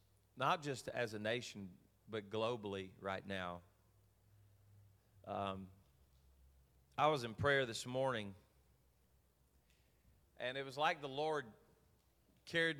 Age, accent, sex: 40-59, American, male